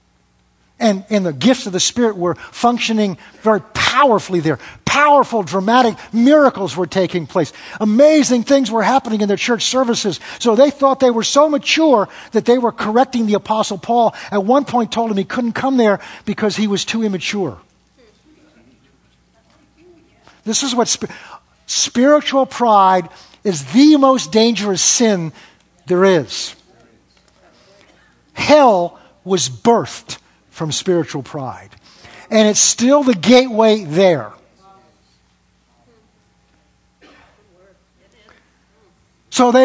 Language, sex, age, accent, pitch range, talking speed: English, male, 50-69, American, 185-260 Hz, 120 wpm